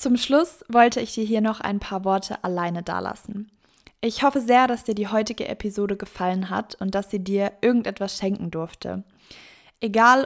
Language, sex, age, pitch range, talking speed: German, female, 20-39, 200-230 Hz, 175 wpm